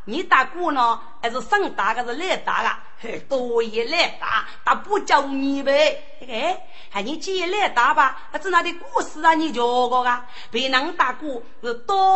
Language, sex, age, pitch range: Chinese, female, 30-49, 225-330 Hz